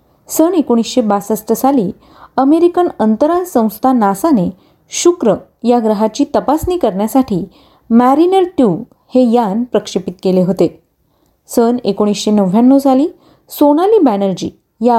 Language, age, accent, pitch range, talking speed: Marathi, 30-49, native, 205-280 Hz, 105 wpm